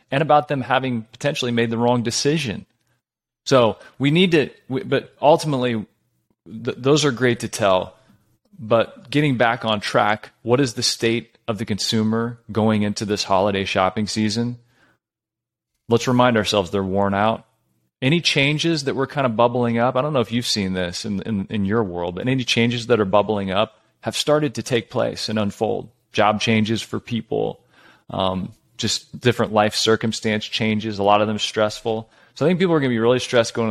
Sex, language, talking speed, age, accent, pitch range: male, English, 185 wpm, 30-49, American, 105-120 Hz